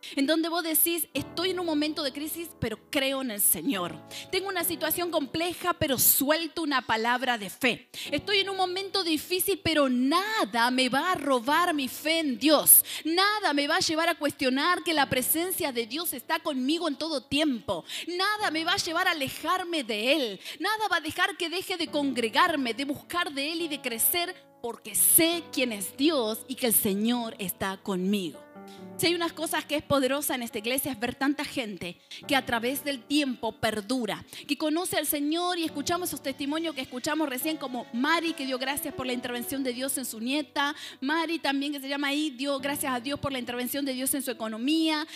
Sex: female